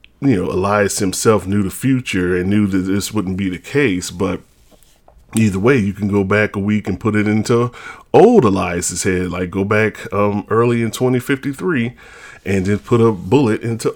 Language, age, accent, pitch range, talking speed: English, 30-49, American, 95-110 Hz, 190 wpm